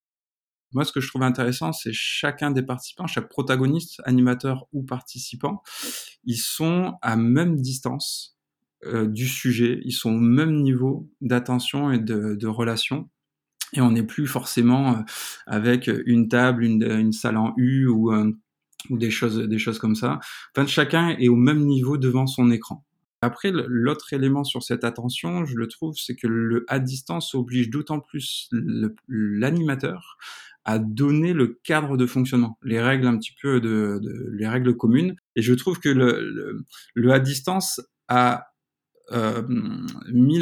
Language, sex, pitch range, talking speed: French, male, 120-140 Hz, 160 wpm